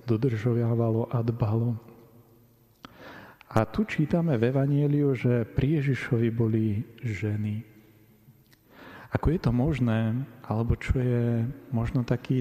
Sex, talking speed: male, 105 wpm